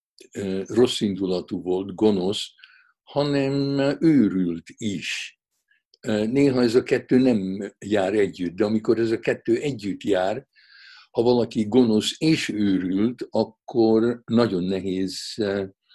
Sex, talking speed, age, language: male, 105 wpm, 60-79, Hungarian